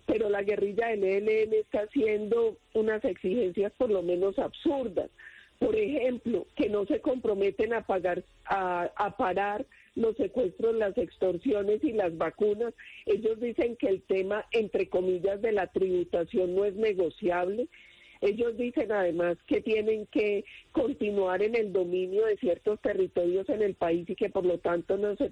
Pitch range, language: 190-245 Hz, English